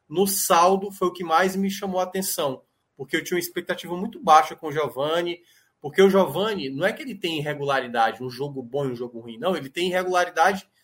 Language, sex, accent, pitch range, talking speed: Portuguese, male, Brazilian, 150-190 Hz, 220 wpm